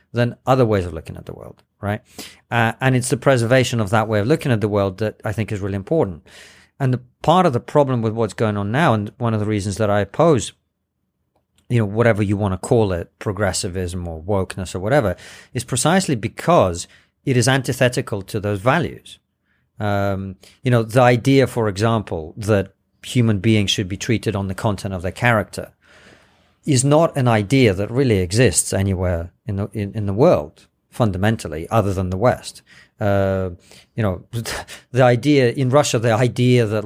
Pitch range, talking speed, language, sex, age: 100-130 Hz, 190 wpm, English, male, 40-59